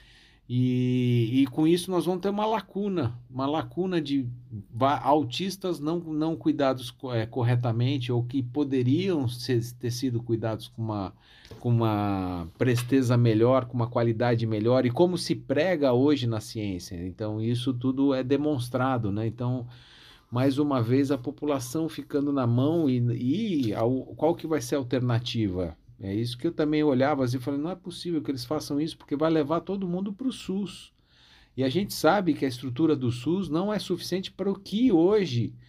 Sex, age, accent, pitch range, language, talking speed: male, 50-69, Brazilian, 120-155 Hz, Portuguese, 170 wpm